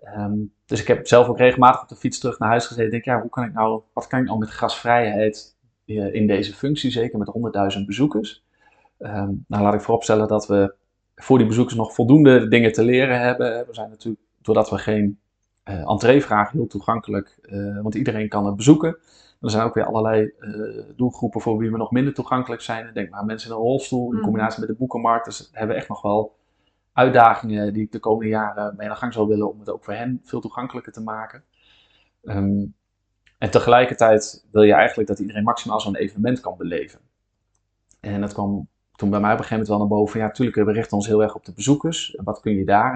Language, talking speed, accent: Dutch, 220 wpm, Dutch